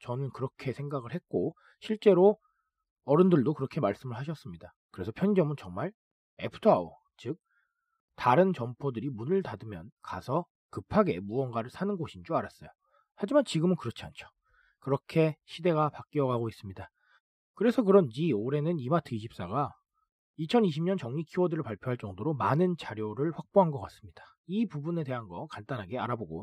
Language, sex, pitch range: Korean, male, 120-185 Hz